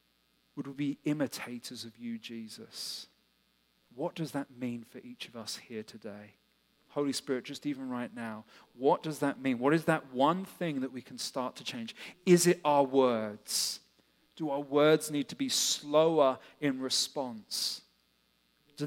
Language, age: English, 40-59